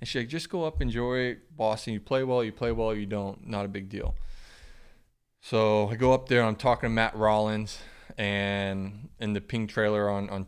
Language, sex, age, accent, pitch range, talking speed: English, male, 20-39, American, 100-115 Hz, 220 wpm